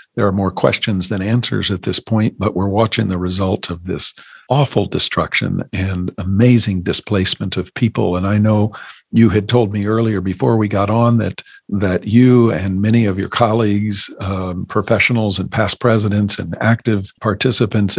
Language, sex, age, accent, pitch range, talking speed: English, male, 50-69, American, 95-115 Hz, 170 wpm